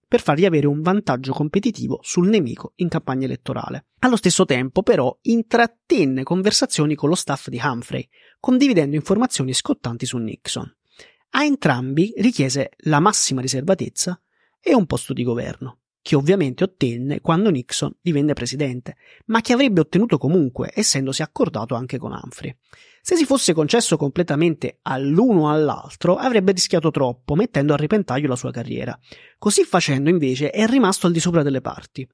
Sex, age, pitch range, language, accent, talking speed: male, 30-49, 145-210 Hz, Italian, native, 155 wpm